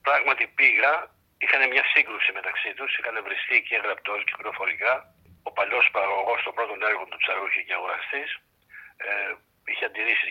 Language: Greek